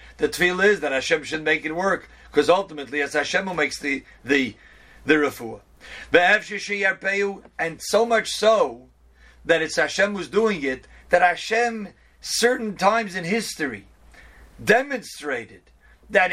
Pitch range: 160-210 Hz